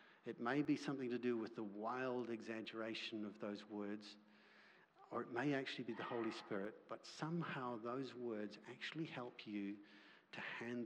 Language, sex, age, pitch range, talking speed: English, male, 50-69, 105-135 Hz, 165 wpm